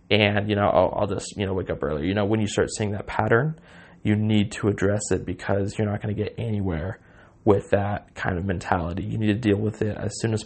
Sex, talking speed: male, 260 wpm